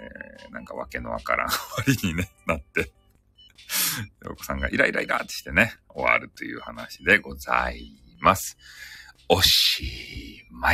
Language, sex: Japanese, male